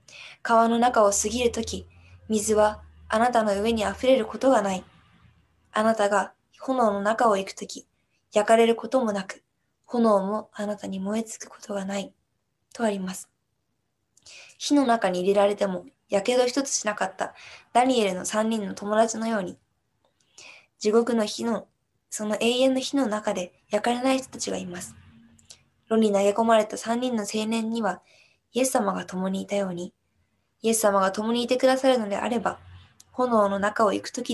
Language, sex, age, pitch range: Japanese, female, 20-39, 195-235 Hz